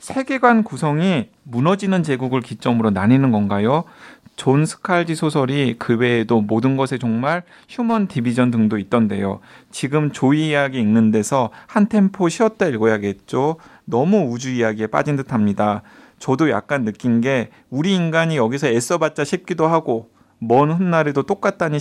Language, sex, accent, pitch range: Korean, male, native, 115-175 Hz